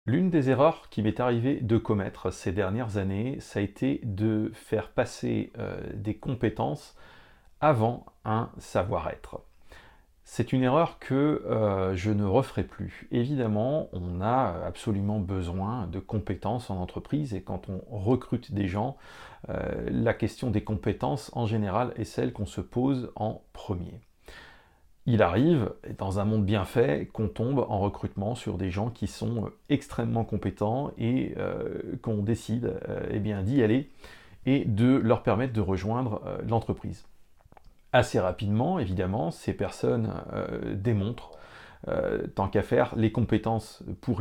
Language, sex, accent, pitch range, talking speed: French, male, French, 100-125 Hz, 145 wpm